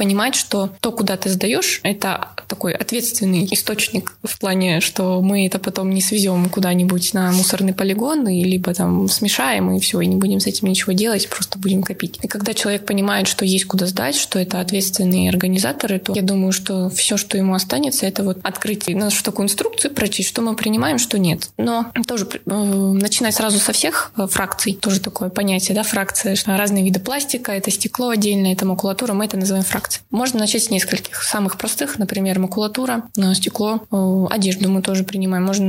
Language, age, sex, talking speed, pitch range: Russian, 20-39, female, 185 wpm, 190-220 Hz